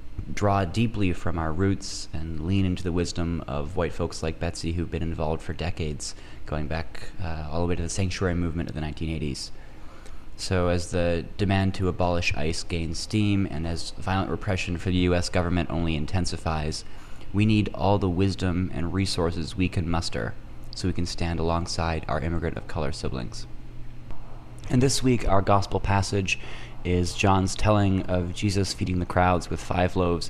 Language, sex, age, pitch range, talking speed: English, male, 30-49, 85-105 Hz, 175 wpm